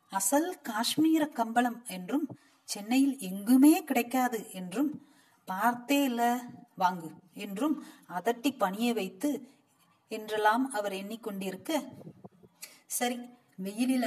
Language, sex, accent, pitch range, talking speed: Tamil, female, native, 200-250 Hz, 70 wpm